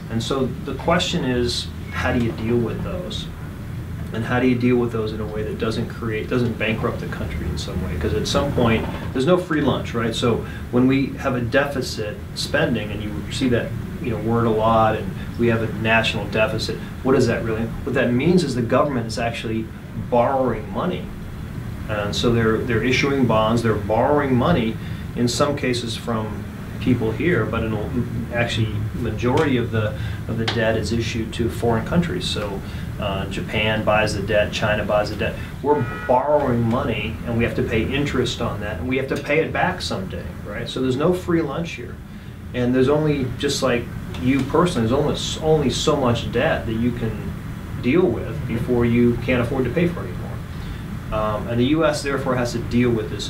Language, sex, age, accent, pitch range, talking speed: English, male, 40-59, American, 105-125 Hz, 200 wpm